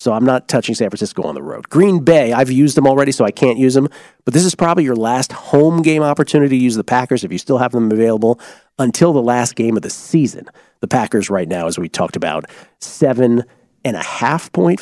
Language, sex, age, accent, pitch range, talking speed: English, male, 40-59, American, 115-160 Hz, 225 wpm